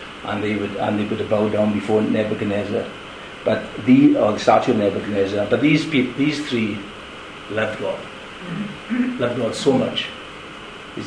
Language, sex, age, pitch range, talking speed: English, male, 50-69, 125-180 Hz, 150 wpm